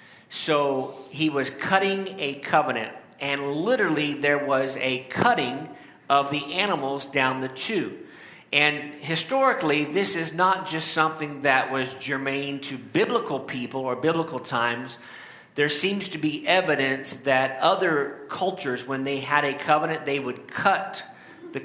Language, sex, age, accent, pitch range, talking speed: English, male, 50-69, American, 130-160 Hz, 140 wpm